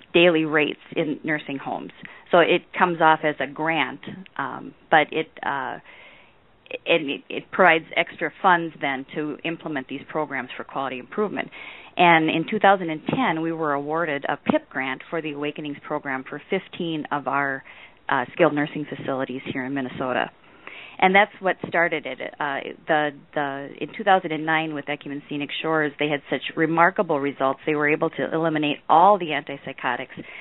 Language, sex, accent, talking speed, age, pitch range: English, female, American, 160 wpm, 40-59, 140-170 Hz